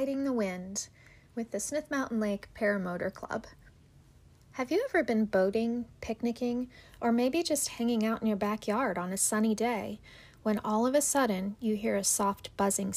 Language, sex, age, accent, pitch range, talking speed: English, female, 30-49, American, 200-255 Hz, 175 wpm